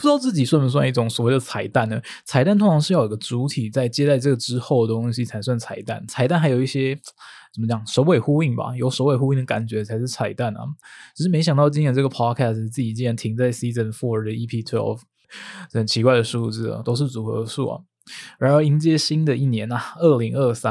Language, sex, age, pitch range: Chinese, male, 20-39, 115-135 Hz